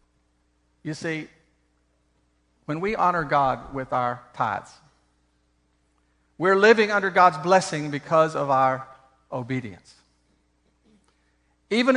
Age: 50-69